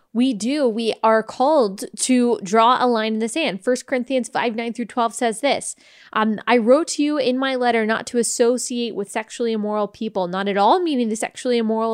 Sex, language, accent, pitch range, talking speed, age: female, English, American, 210-250 Hz, 210 wpm, 20-39